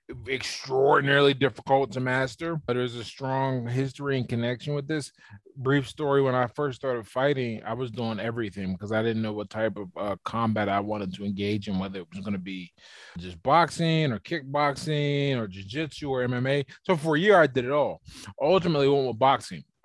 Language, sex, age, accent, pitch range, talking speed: English, male, 20-39, American, 105-130 Hz, 195 wpm